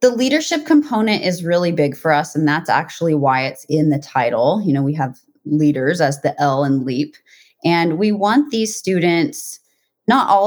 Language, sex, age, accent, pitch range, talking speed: English, female, 30-49, American, 140-165 Hz, 190 wpm